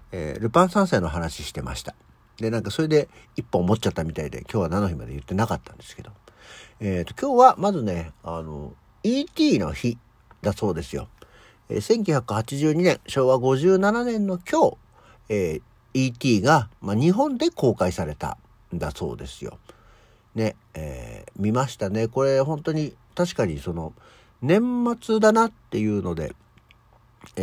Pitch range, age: 95-155 Hz, 60-79